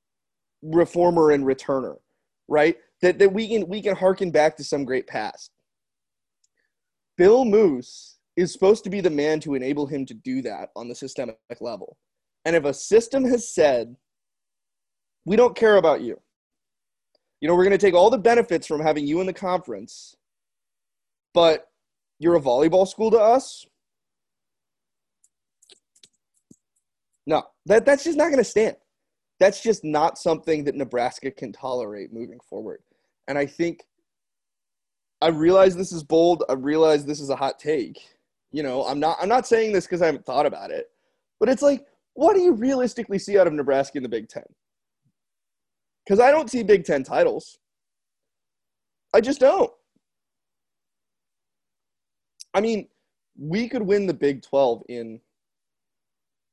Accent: American